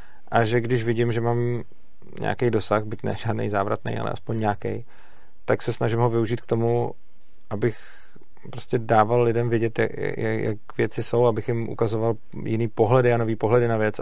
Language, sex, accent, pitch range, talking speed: Czech, male, native, 105-120 Hz, 175 wpm